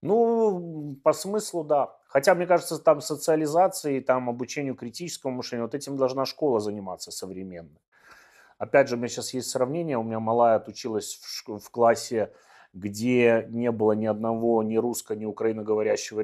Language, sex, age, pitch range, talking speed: Russian, male, 30-49, 105-125 Hz, 150 wpm